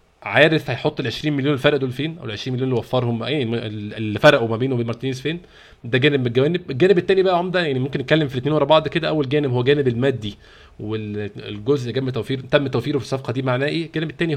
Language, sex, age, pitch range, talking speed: Arabic, male, 20-39, 120-150 Hz, 235 wpm